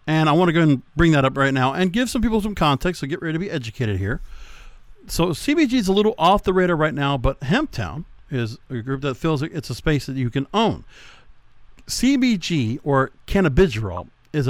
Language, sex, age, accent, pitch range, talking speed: English, male, 50-69, American, 135-200 Hz, 230 wpm